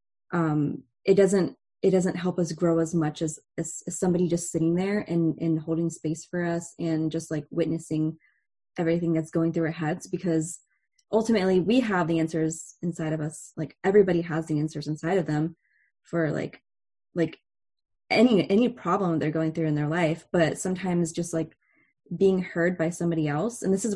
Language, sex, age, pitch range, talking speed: English, female, 20-39, 160-180 Hz, 185 wpm